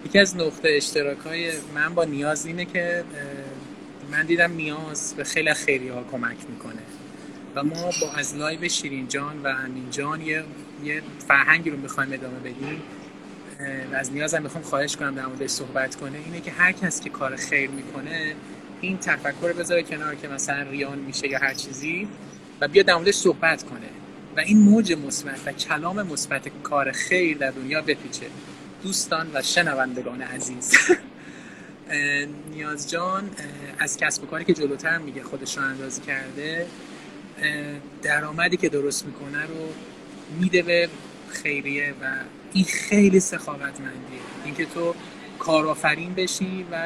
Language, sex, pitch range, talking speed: Persian, male, 140-170 Hz, 150 wpm